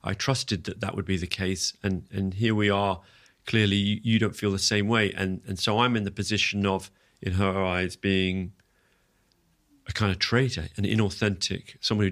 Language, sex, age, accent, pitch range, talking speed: English, male, 40-59, British, 95-125 Hz, 205 wpm